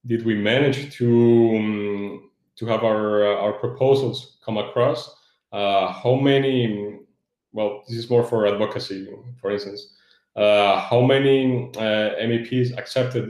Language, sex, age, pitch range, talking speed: English, male, 20-39, 105-120 Hz, 135 wpm